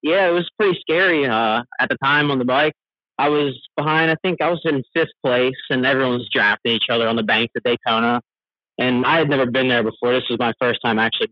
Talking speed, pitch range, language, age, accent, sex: 245 wpm, 120-145 Hz, English, 30-49, American, male